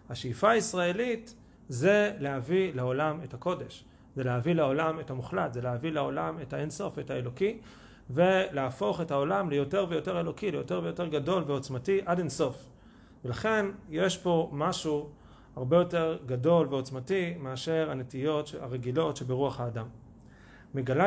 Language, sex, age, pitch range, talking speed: Hebrew, male, 40-59, 125-175 Hz, 130 wpm